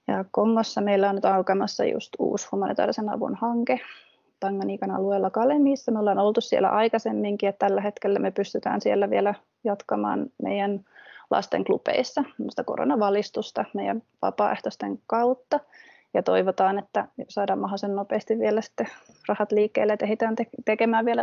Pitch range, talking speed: 200-240 Hz, 135 wpm